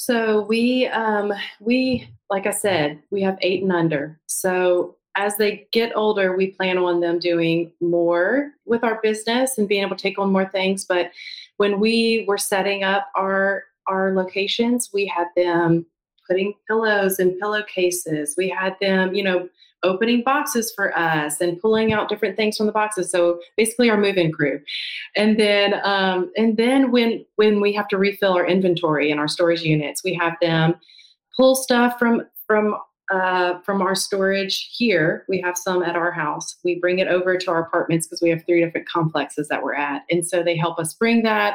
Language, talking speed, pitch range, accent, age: English, 190 wpm, 175-215 Hz, American, 30-49